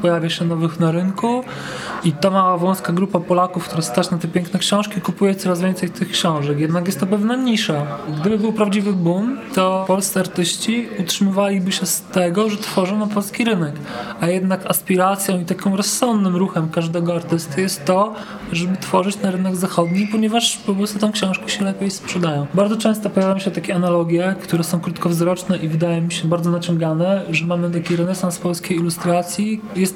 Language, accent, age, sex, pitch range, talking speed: Polish, native, 20-39, male, 170-195 Hz, 180 wpm